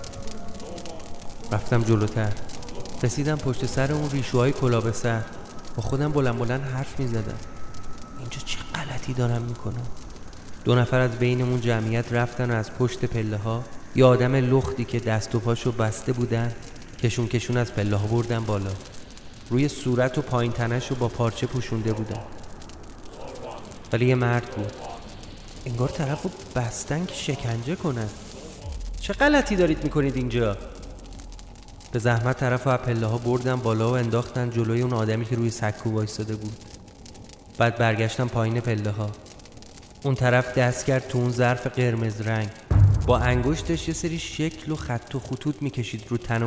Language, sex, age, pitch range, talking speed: Persian, male, 30-49, 110-130 Hz, 145 wpm